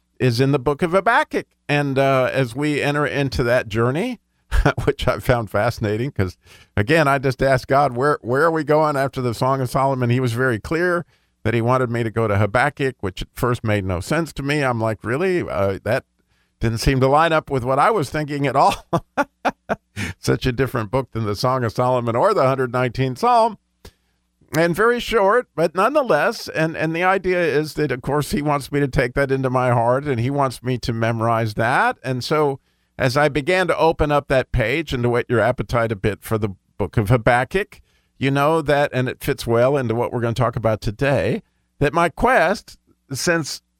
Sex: male